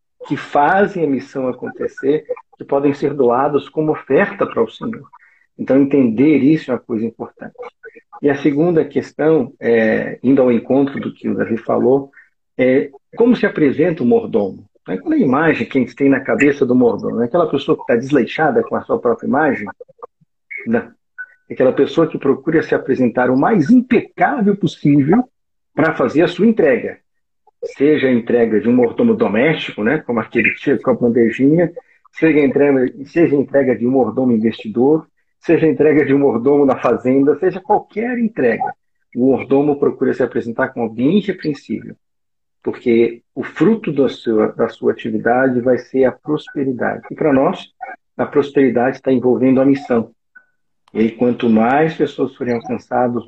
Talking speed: 170 wpm